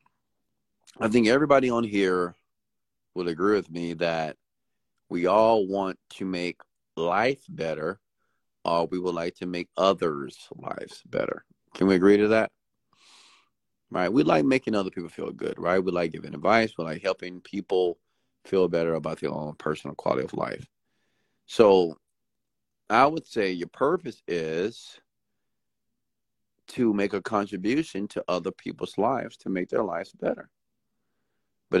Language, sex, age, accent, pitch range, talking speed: English, male, 30-49, American, 90-115 Hz, 145 wpm